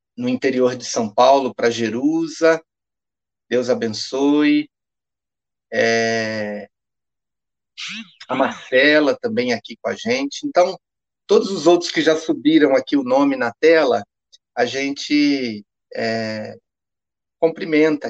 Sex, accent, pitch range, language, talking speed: male, Brazilian, 125-175 Hz, Portuguese, 110 wpm